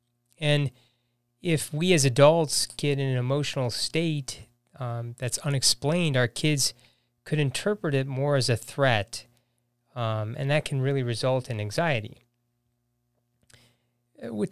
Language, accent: English, American